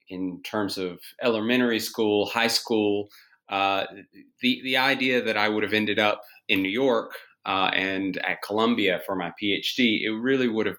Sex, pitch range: male, 90-110 Hz